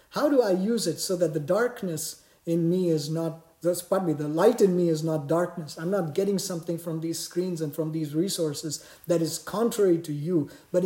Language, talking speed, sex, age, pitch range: English, 215 wpm, male, 50-69, 150-195 Hz